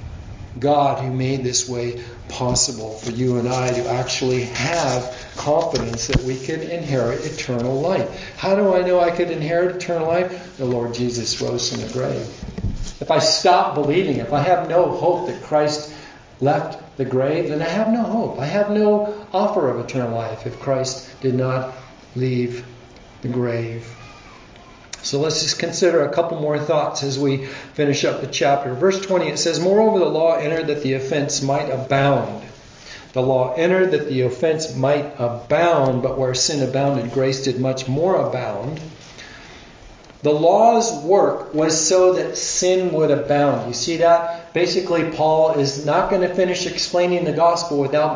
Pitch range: 130-175 Hz